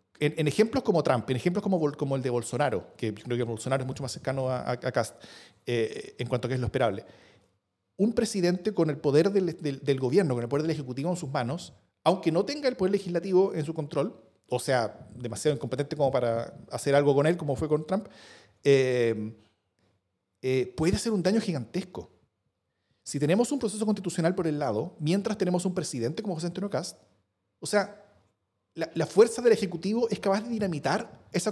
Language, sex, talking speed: Spanish, male, 205 wpm